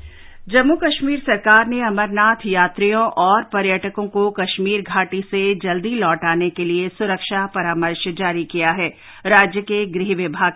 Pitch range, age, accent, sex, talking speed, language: 175-215 Hz, 50-69, Indian, female, 140 wpm, English